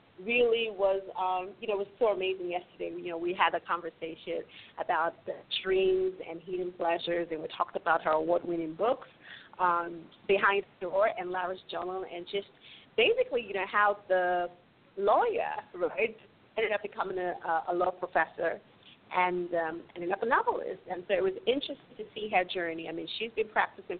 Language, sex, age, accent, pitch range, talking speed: English, female, 30-49, American, 175-240 Hz, 180 wpm